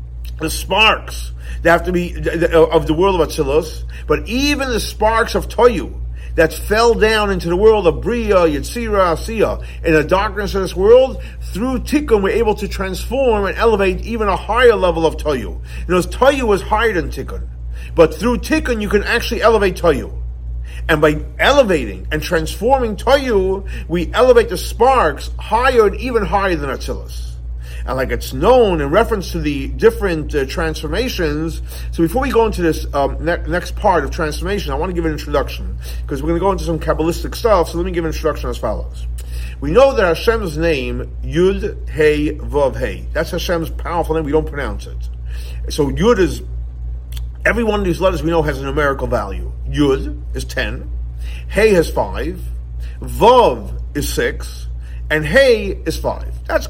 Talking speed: 180 wpm